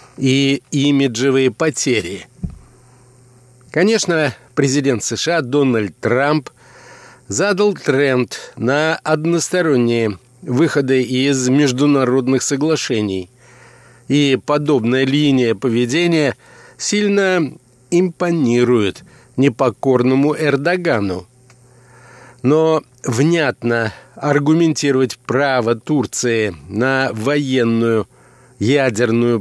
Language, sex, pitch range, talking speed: Russian, male, 125-150 Hz, 65 wpm